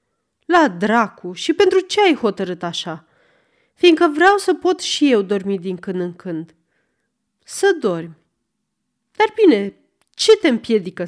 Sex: female